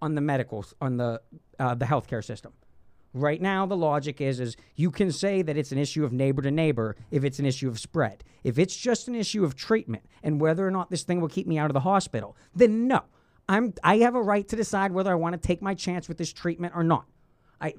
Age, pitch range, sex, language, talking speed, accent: 40-59, 145-195 Hz, male, English, 250 wpm, American